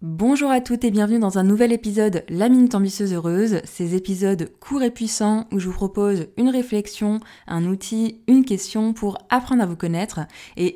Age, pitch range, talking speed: 20-39, 180-235 Hz, 190 wpm